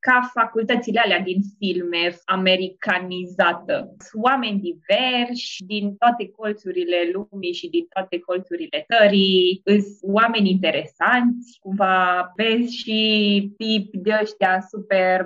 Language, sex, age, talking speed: Romanian, female, 20-39, 100 wpm